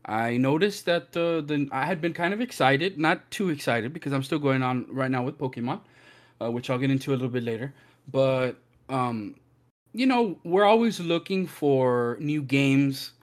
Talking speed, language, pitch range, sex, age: 185 wpm, English, 125-155 Hz, male, 20-39